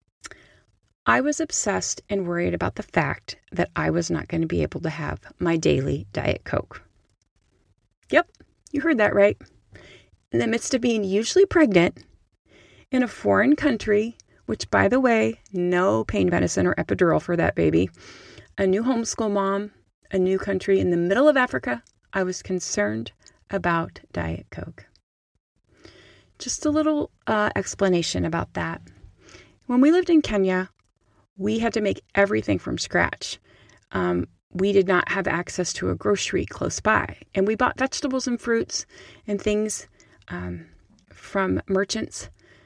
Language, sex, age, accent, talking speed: English, female, 30-49, American, 155 wpm